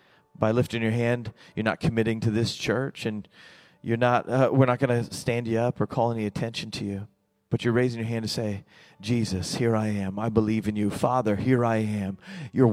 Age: 30-49